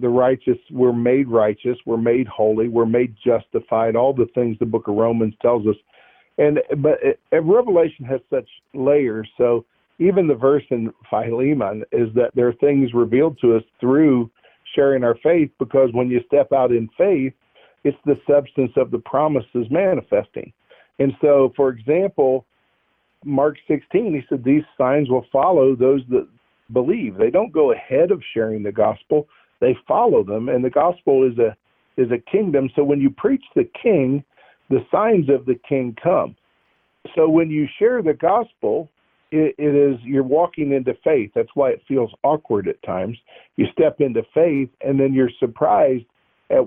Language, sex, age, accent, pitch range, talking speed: English, male, 50-69, American, 120-145 Hz, 175 wpm